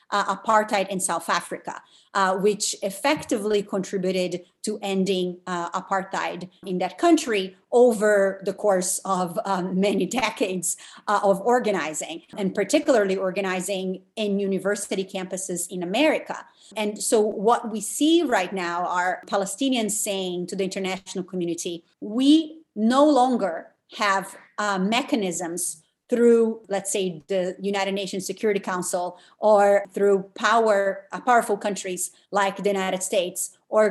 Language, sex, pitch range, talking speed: English, female, 190-225 Hz, 130 wpm